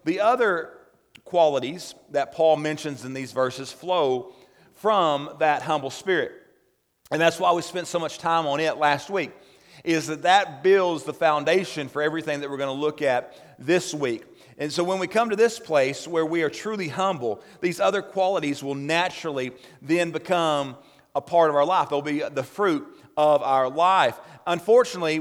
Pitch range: 145-185 Hz